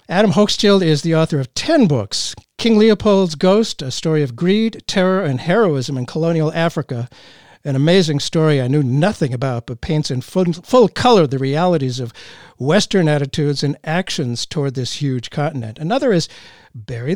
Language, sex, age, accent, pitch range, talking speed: English, male, 60-79, American, 140-190 Hz, 170 wpm